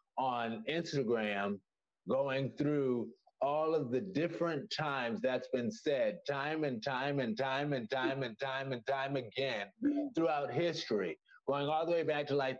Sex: male